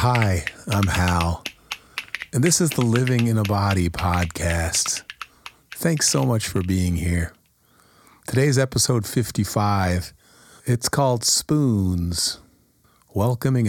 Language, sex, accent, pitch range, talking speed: English, male, American, 90-120 Hz, 110 wpm